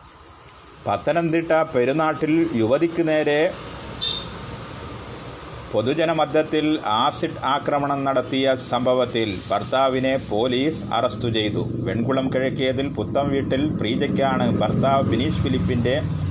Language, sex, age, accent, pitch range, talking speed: Malayalam, male, 30-49, native, 115-140 Hz, 75 wpm